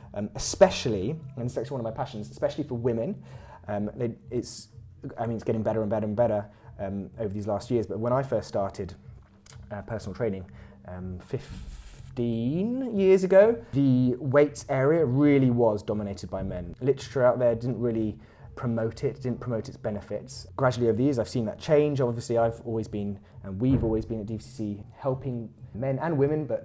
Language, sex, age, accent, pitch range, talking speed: English, male, 20-39, British, 105-125 Hz, 185 wpm